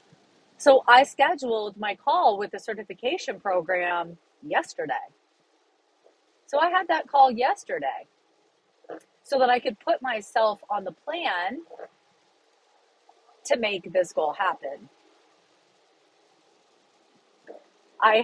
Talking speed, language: 100 wpm, English